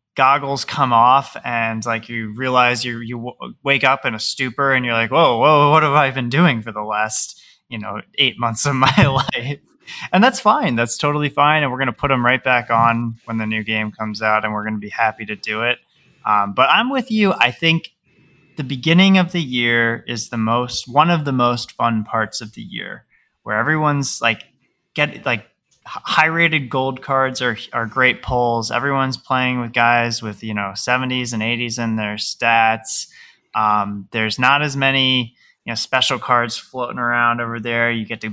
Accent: American